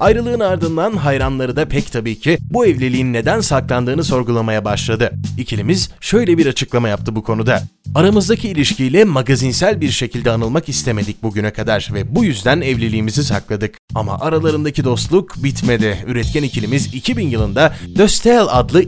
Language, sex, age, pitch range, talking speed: Turkish, male, 30-49, 110-150 Hz, 140 wpm